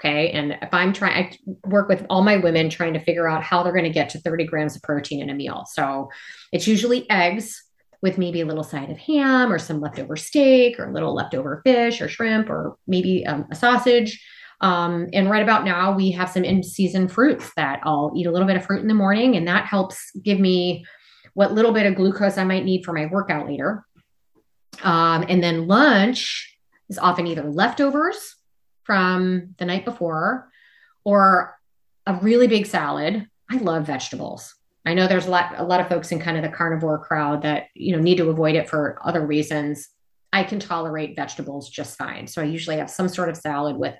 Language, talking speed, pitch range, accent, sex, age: English, 210 wpm, 155-200 Hz, American, female, 30-49